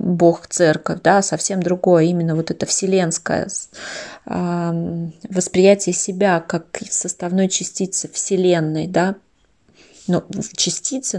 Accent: native